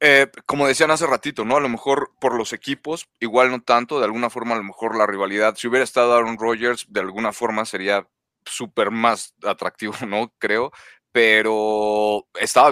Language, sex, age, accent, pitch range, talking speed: Spanish, male, 30-49, Mexican, 105-120 Hz, 185 wpm